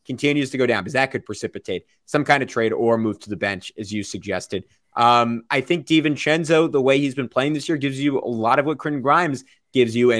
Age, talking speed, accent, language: 30-49, 235 wpm, American, English